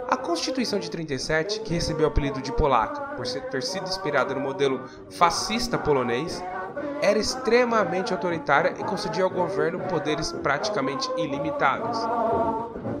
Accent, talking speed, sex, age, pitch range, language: Brazilian, 130 wpm, male, 10-29, 145-220 Hz, Portuguese